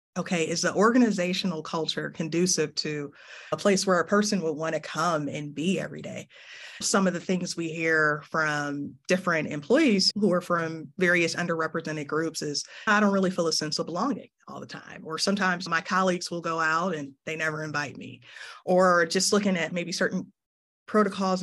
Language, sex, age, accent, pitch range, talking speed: English, female, 30-49, American, 160-205 Hz, 185 wpm